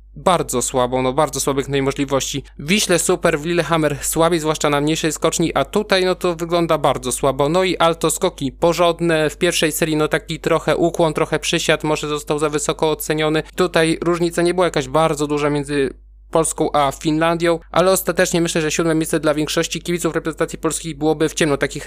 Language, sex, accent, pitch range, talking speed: Polish, male, native, 145-165 Hz, 185 wpm